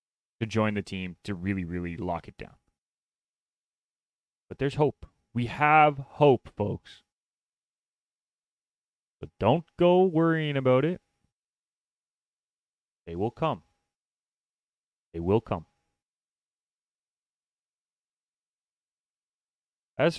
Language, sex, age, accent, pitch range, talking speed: English, male, 30-49, American, 105-150 Hz, 90 wpm